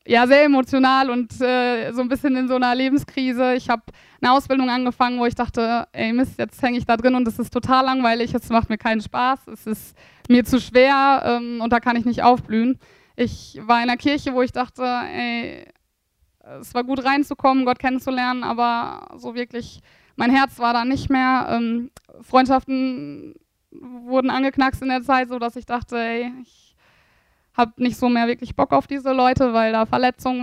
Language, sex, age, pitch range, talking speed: German, female, 20-39, 235-260 Hz, 195 wpm